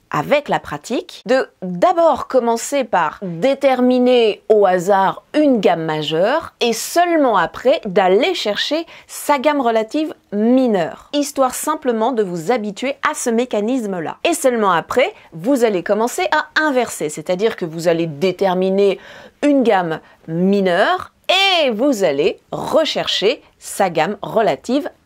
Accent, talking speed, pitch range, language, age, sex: French, 135 wpm, 195-305 Hz, French, 40-59, female